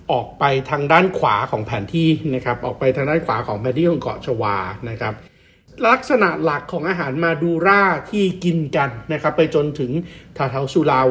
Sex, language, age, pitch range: male, Thai, 60-79, 130-180 Hz